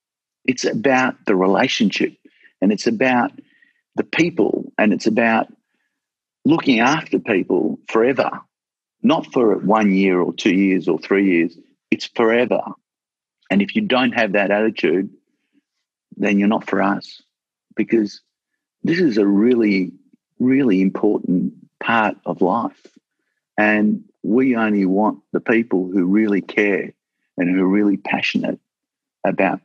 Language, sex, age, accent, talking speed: English, male, 50-69, Australian, 130 wpm